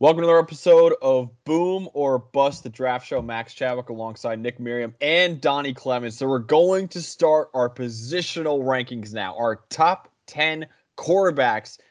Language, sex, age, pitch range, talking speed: English, male, 20-39, 115-140 Hz, 160 wpm